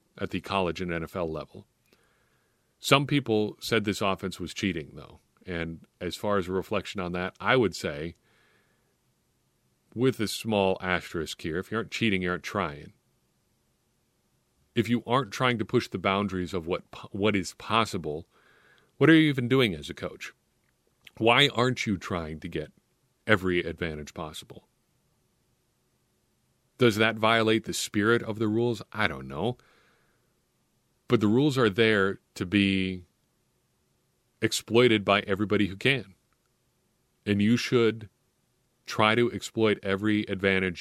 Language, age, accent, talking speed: English, 40-59, American, 145 wpm